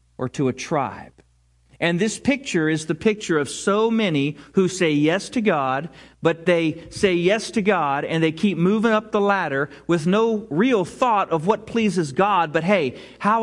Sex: male